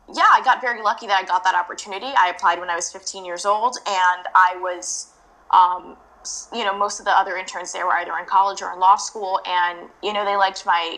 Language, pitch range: English, 180-220 Hz